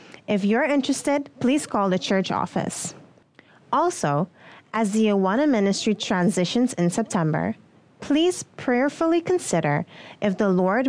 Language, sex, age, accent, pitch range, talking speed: English, female, 30-49, American, 180-245 Hz, 120 wpm